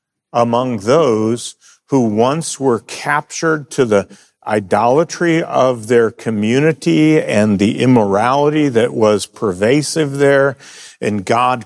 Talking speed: 110 wpm